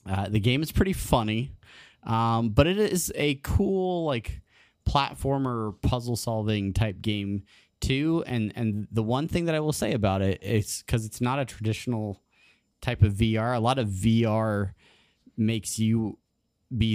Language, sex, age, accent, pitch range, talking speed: English, male, 30-49, American, 100-120 Hz, 160 wpm